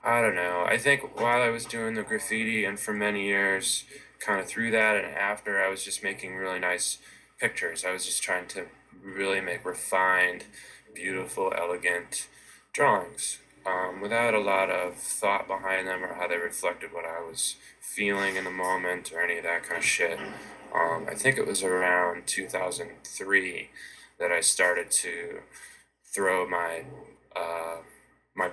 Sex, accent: male, American